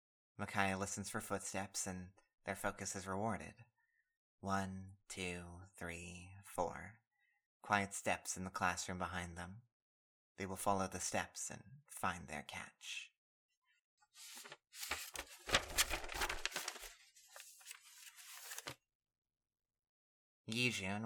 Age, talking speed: 30-49, 85 wpm